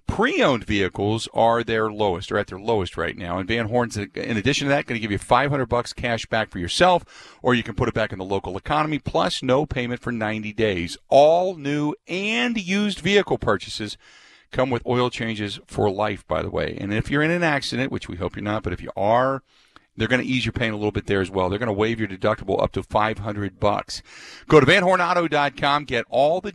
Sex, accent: male, American